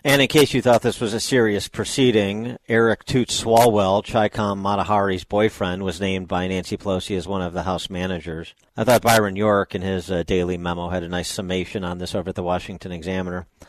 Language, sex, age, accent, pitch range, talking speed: English, male, 50-69, American, 95-115 Hz, 210 wpm